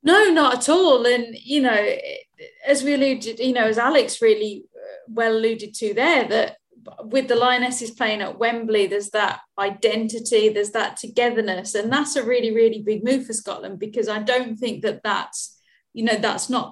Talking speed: 185 wpm